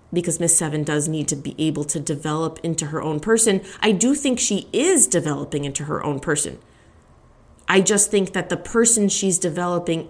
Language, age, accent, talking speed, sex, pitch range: English, 20-39, American, 190 wpm, female, 155-215 Hz